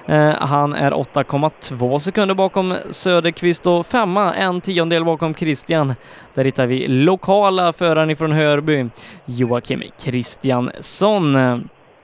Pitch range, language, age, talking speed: 145-185 Hz, Swedish, 20-39, 105 wpm